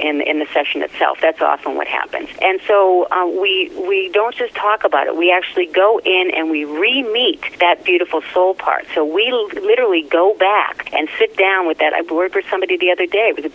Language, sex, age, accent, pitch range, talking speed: English, female, 40-59, American, 160-250 Hz, 215 wpm